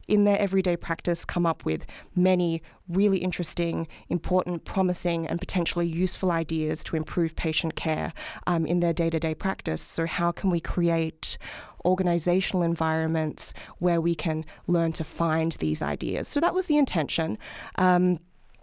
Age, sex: 20-39, female